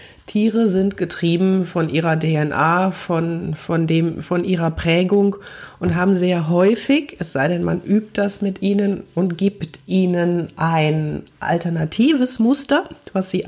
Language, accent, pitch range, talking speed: German, German, 160-195 Hz, 145 wpm